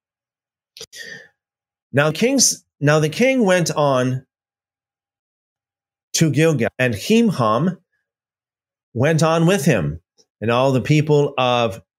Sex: male